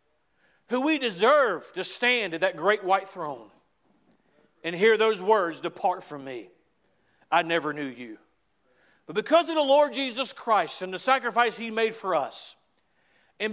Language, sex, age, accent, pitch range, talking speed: English, male, 50-69, American, 165-235 Hz, 160 wpm